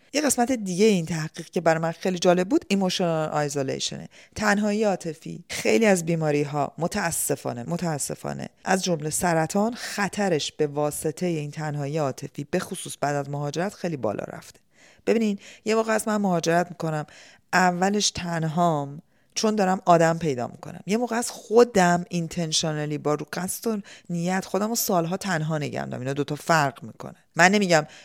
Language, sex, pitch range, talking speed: Persian, female, 155-190 Hz, 160 wpm